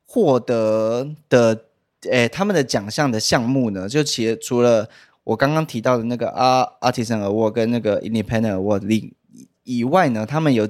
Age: 20-39